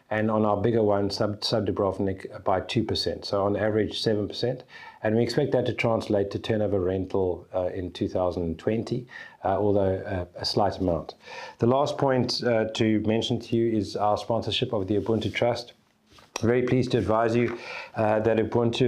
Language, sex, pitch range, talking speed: English, male, 100-115 Hz, 180 wpm